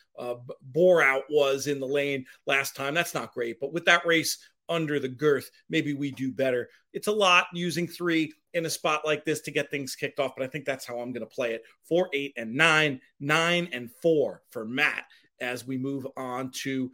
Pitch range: 140-170 Hz